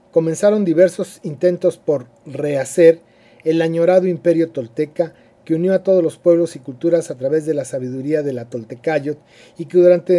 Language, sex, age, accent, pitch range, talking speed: Spanish, male, 40-59, Mexican, 145-180 Hz, 165 wpm